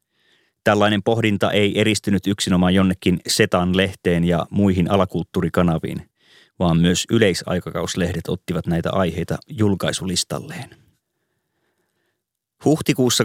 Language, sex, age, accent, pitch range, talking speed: Finnish, male, 30-49, native, 90-105 Hz, 80 wpm